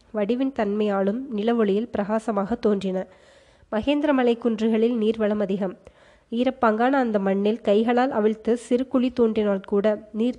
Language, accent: Tamil, native